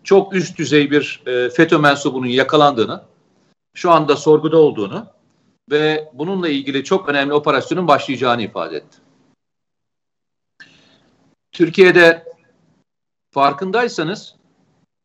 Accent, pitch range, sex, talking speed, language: native, 150-185 Hz, male, 90 wpm, Turkish